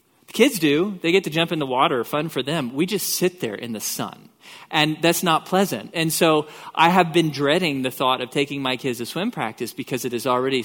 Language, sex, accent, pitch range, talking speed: English, male, American, 130-175 Hz, 235 wpm